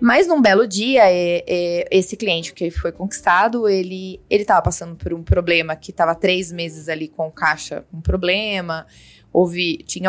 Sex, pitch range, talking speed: female, 175-225 Hz, 180 wpm